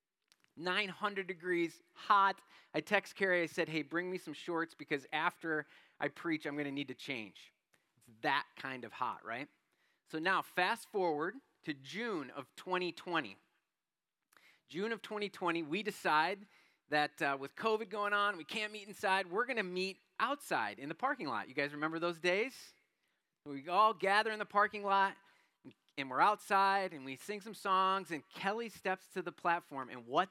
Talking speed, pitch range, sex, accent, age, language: 175 wpm, 150-195 Hz, male, American, 30-49, English